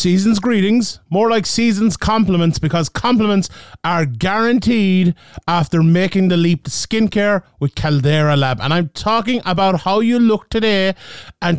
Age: 30-49